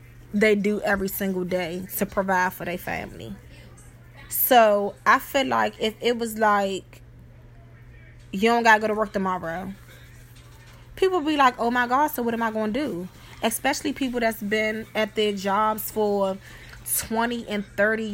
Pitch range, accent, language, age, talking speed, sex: 165-220 Hz, American, English, 20-39, 170 wpm, female